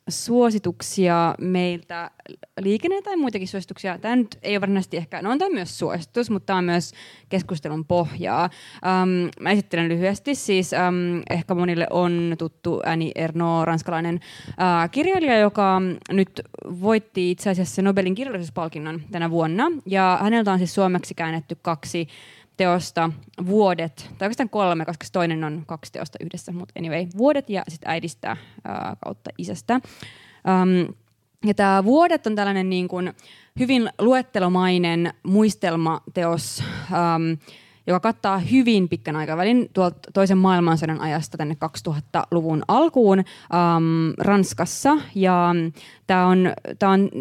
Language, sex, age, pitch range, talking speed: Finnish, female, 20-39, 165-195 Hz, 125 wpm